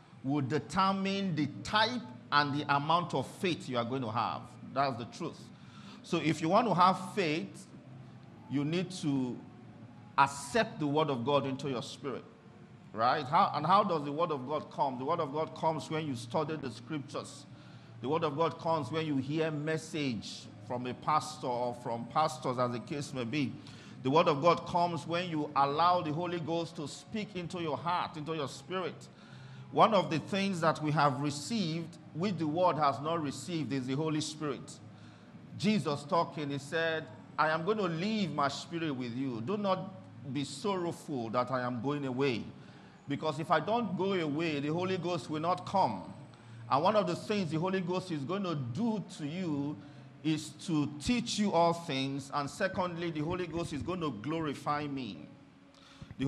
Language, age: English, 50-69